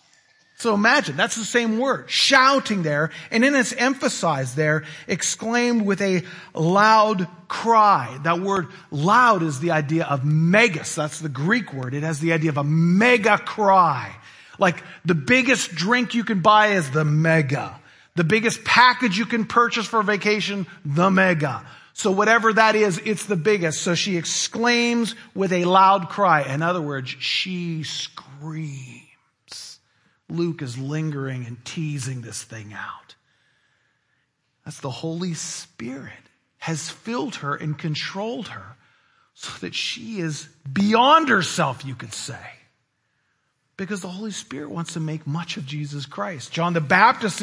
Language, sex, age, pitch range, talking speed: English, male, 40-59, 150-210 Hz, 150 wpm